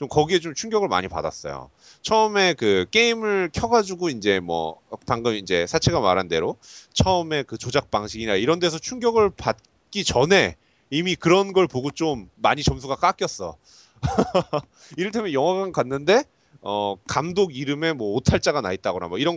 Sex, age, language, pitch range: male, 30-49, Korean, 120-200 Hz